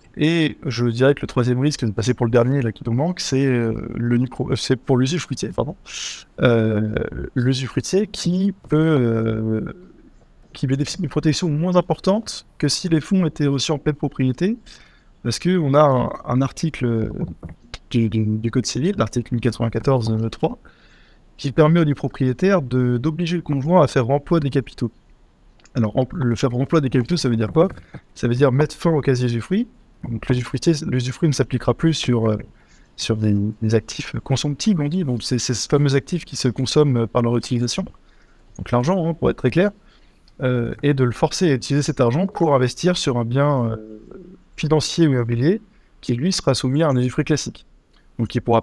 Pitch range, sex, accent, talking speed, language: 120-155 Hz, male, French, 190 wpm, French